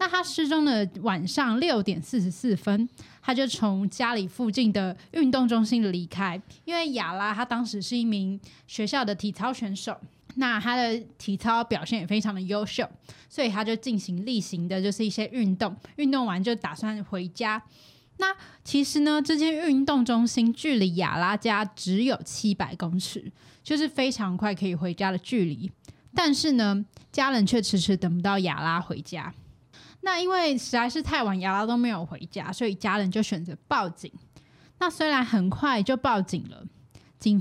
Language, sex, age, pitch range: Chinese, female, 20-39, 195-255 Hz